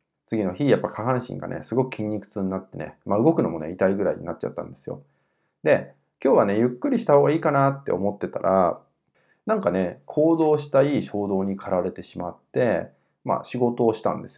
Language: Japanese